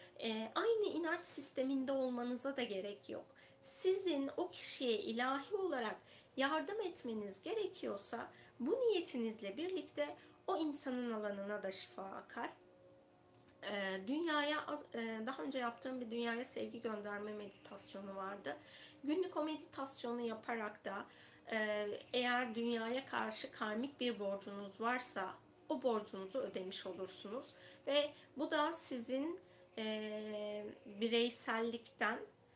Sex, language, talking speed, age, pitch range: female, Turkish, 110 wpm, 30-49, 210-270 Hz